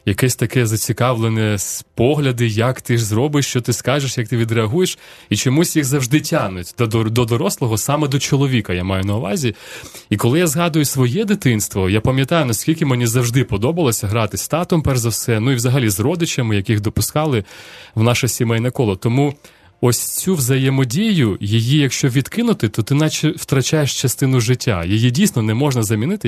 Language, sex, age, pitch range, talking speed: Ukrainian, male, 30-49, 110-150 Hz, 175 wpm